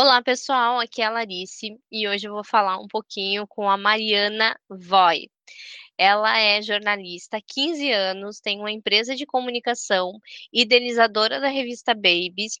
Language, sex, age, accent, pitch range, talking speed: Portuguese, female, 10-29, Brazilian, 195-240 Hz, 150 wpm